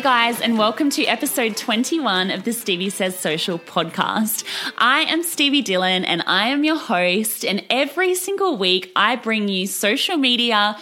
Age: 20-39